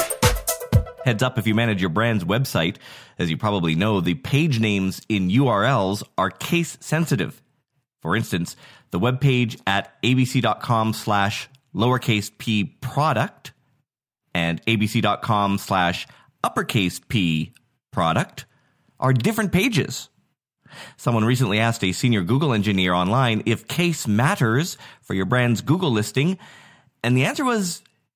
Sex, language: male, English